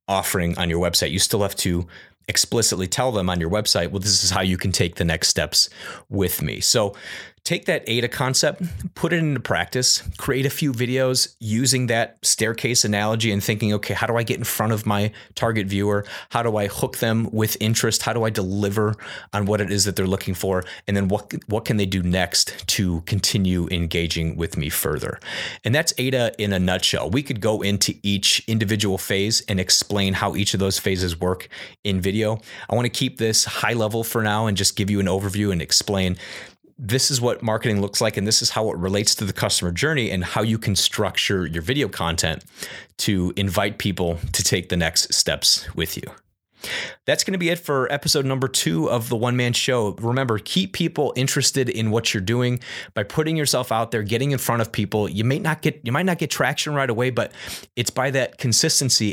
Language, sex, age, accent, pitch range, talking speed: English, male, 30-49, American, 95-120 Hz, 215 wpm